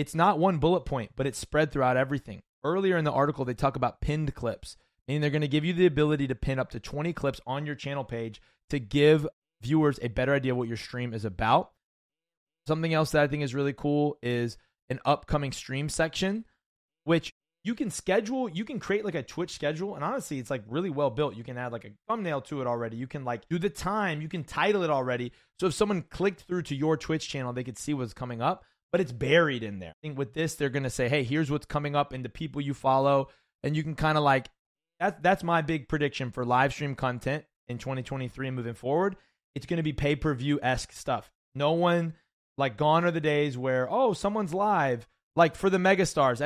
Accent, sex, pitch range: American, male, 130-165 Hz